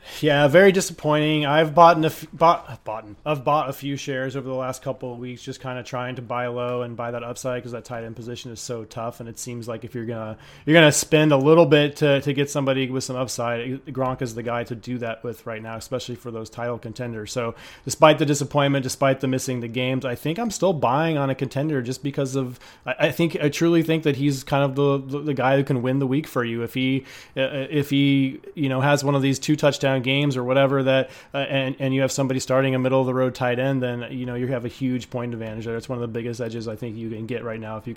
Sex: male